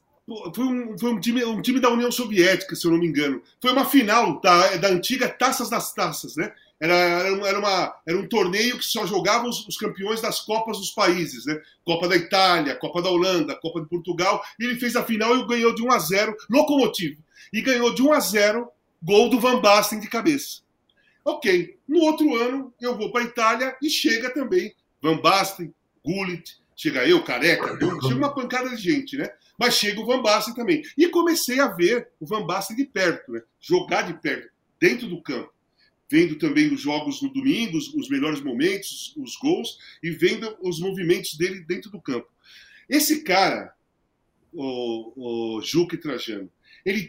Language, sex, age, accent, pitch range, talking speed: Portuguese, male, 40-59, Brazilian, 175-260 Hz, 180 wpm